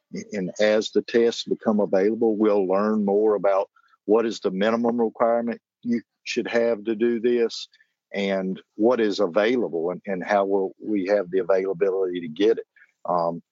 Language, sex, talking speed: English, male, 165 wpm